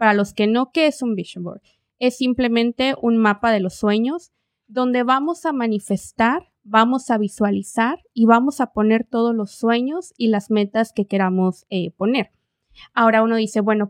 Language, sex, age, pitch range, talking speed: Spanish, female, 20-39, 200-245 Hz, 175 wpm